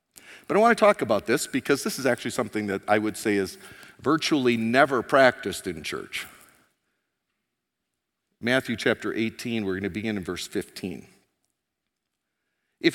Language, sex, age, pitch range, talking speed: English, male, 50-69, 100-135 Hz, 155 wpm